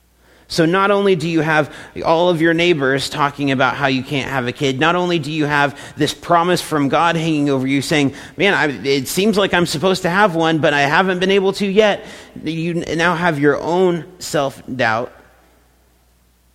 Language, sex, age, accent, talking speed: English, male, 40-59, American, 190 wpm